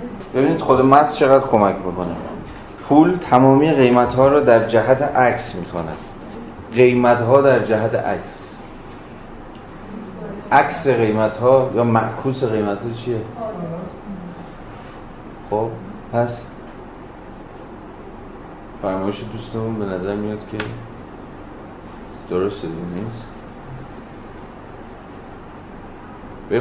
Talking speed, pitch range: 90 wpm, 105-130 Hz